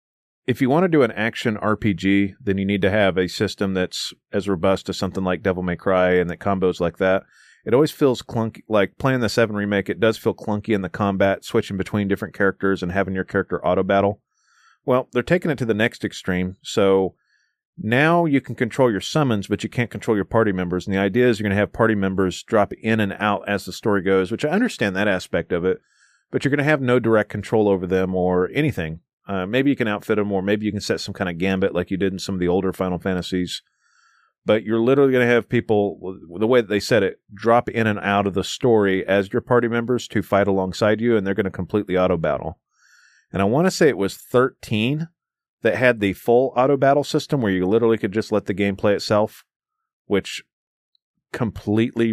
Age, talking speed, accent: 30-49, 230 wpm, American